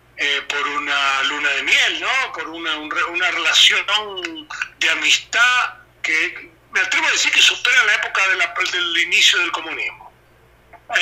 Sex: male